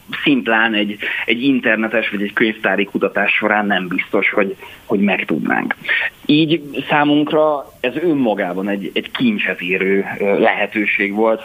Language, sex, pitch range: Hungarian, male, 105-130 Hz